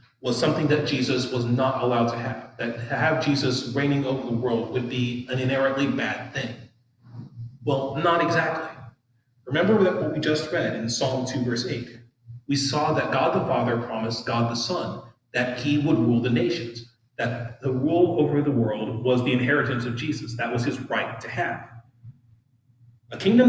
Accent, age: American, 30-49